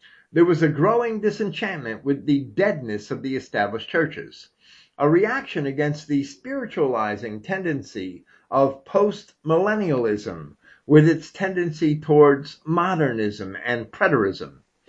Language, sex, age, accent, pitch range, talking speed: English, male, 50-69, American, 135-195 Hz, 110 wpm